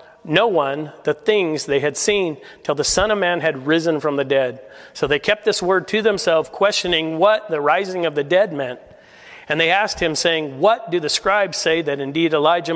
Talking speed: 210 wpm